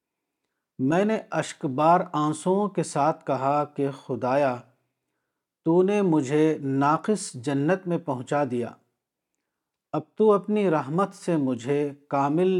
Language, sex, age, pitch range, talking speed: Urdu, male, 50-69, 135-170 Hz, 115 wpm